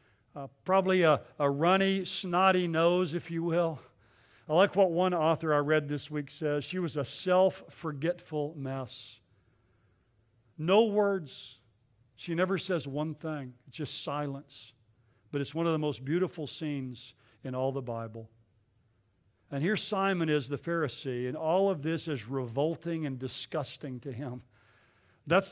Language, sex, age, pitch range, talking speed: English, male, 50-69, 130-185 Hz, 150 wpm